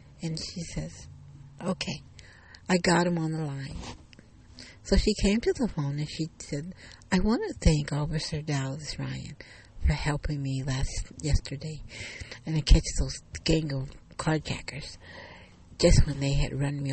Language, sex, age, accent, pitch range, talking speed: English, female, 60-79, American, 115-165 Hz, 155 wpm